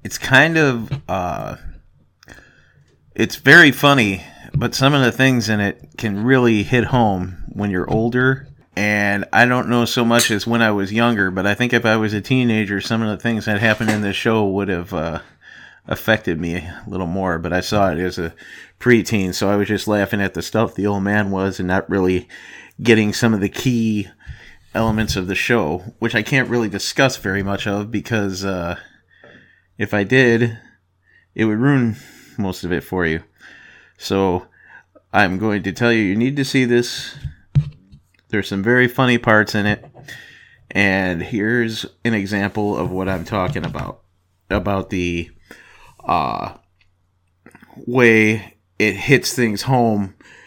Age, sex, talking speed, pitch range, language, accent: 30-49, male, 170 wpm, 95-120 Hz, English, American